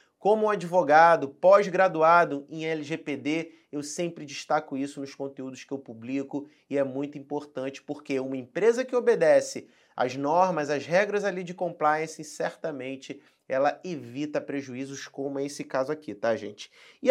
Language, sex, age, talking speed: Portuguese, male, 30-49, 145 wpm